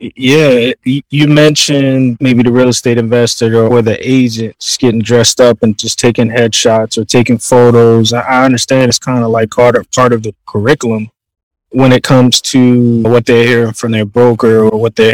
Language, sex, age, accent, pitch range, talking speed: English, male, 20-39, American, 115-135 Hz, 175 wpm